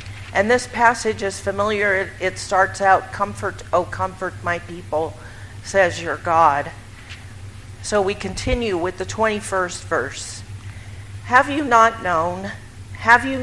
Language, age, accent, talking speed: English, 50-69, American, 130 wpm